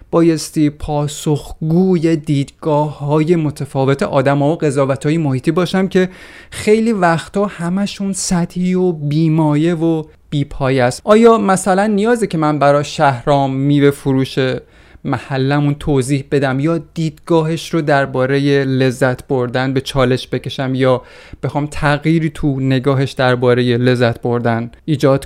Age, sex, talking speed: 30-49, male, 120 wpm